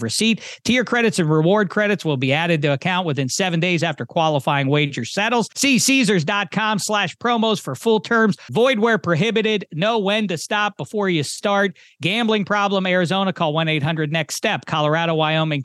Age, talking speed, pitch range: 40-59, 165 wpm, 160-205 Hz